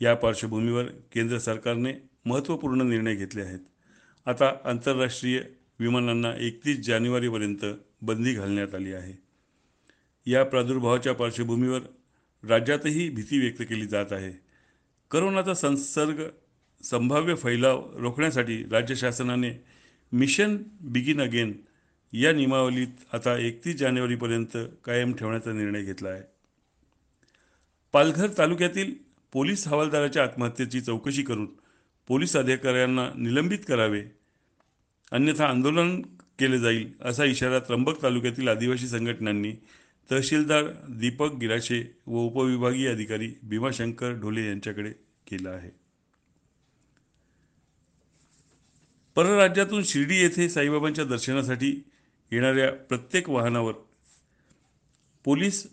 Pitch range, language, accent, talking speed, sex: 115-140 Hz, Marathi, native, 85 wpm, male